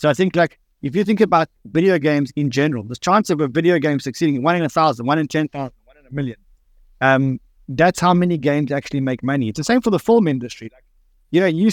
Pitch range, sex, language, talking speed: 135-175 Hz, male, English, 250 wpm